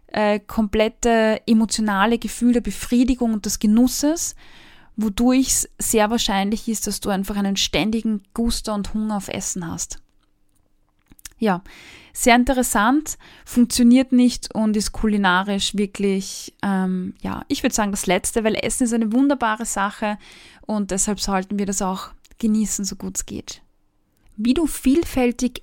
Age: 20-39